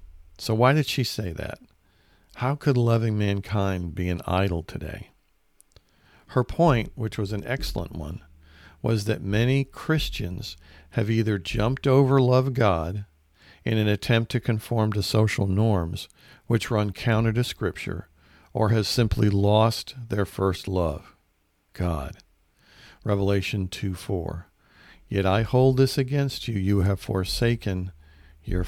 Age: 50-69